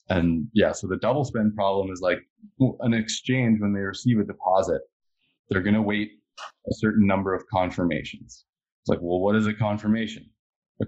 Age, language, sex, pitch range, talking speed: 20-39, English, male, 95-120 Hz, 175 wpm